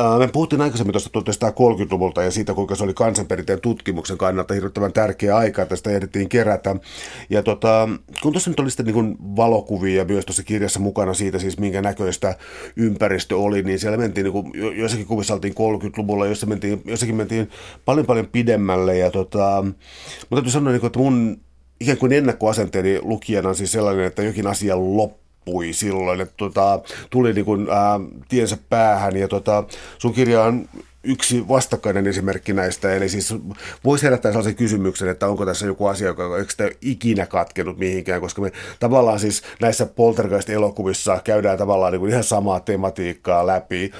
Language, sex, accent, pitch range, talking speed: Finnish, male, native, 95-110 Hz, 165 wpm